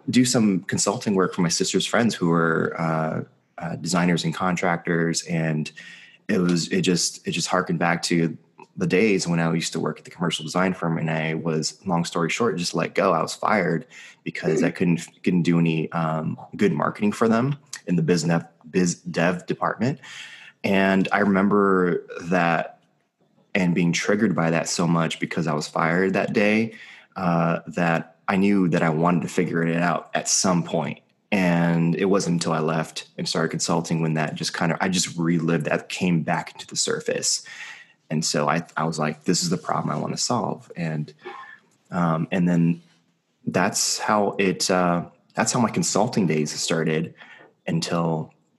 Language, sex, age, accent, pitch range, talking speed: English, male, 20-39, American, 80-95 Hz, 185 wpm